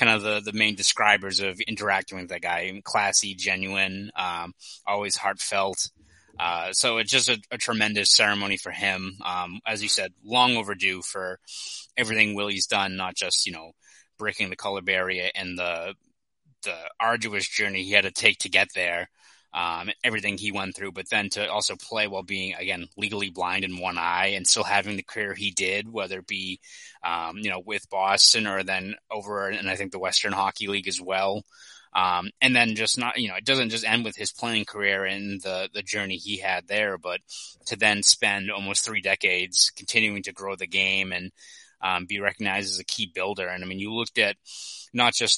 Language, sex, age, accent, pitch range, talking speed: English, male, 20-39, American, 95-105 Hz, 200 wpm